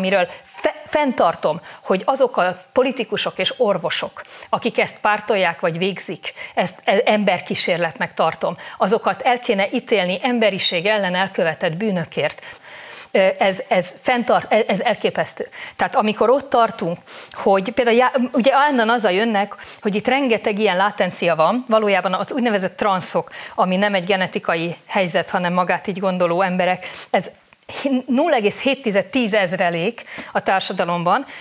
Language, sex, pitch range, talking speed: Hungarian, female, 190-255 Hz, 130 wpm